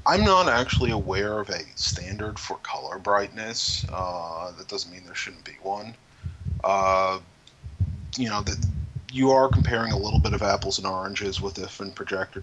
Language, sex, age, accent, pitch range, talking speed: English, male, 30-49, American, 95-110 Hz, 175 wpm